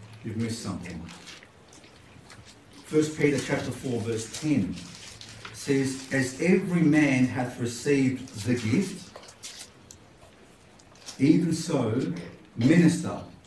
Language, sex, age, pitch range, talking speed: English, male, 50-69, 115-185 Hz, 90 wpm